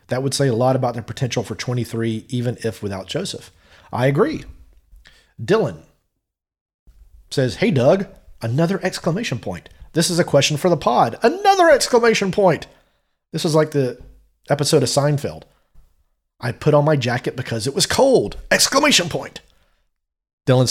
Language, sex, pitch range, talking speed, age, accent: English, male, 115-150 Hz, 150 wpm, 30-49, American